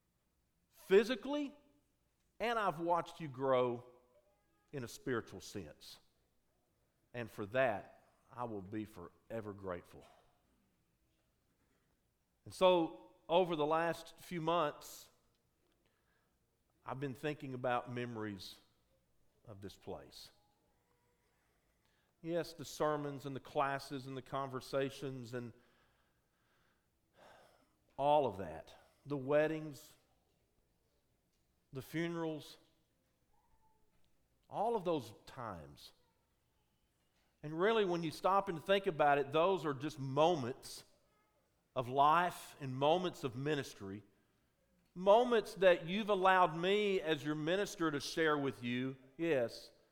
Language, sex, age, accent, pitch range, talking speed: English, male, 50-69, American, 120-170 Hz, 105 wpm